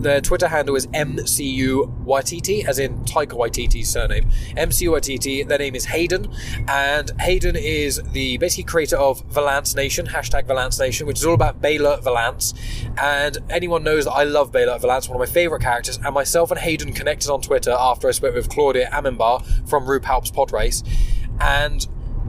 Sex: male